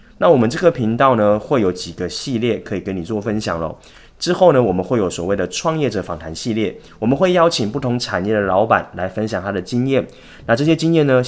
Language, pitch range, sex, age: Chinese, 90-125 Hz, male, 20-39